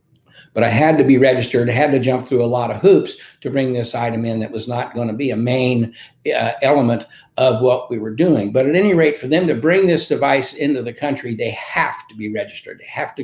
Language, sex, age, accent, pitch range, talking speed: English, male, 60-79, American, 115-140 Hz, 255 wpm